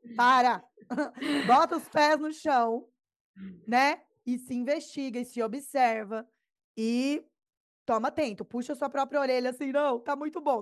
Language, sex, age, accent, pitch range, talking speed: Portuguese, female, 20-39, Brazilian, 215-275 Hz, 145 wpm